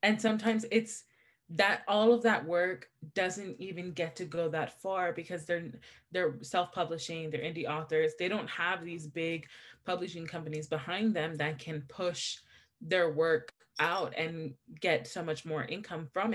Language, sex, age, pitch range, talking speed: English, female, 20-39, 155-190 Hz, 160 wpm